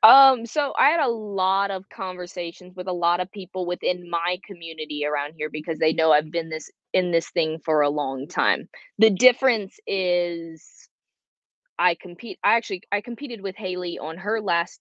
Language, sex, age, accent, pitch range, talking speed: English, female, 20-39, American, 160-210 Hz, 180 wpm